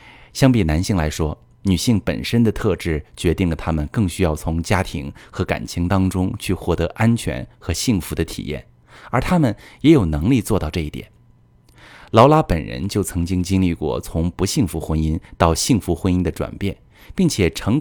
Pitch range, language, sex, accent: 85-120 Hz, Chinese, male, native